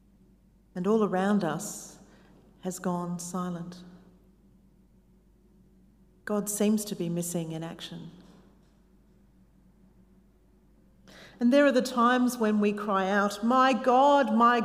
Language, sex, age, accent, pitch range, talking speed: English, female, 40-59, Australian, 180-215 Hz, 105 wpm